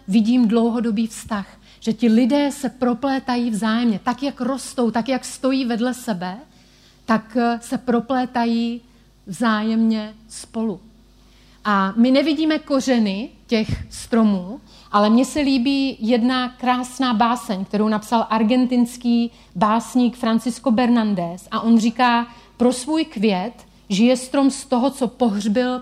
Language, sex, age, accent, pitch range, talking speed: Czech, female, 30-49, native, 220-255 Hz, 125 wpm